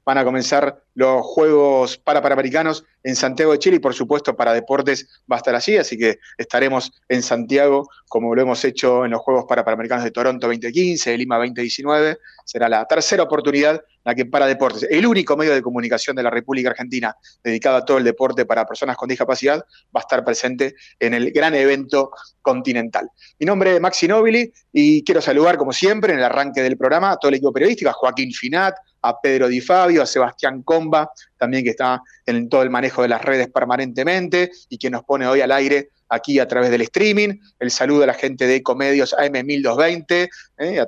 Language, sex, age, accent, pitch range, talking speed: Italian, male, 30-49, Argentinian, 125-160 Hz, 205 wpm